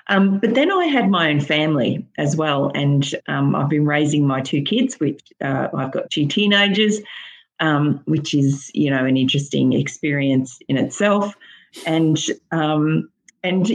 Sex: female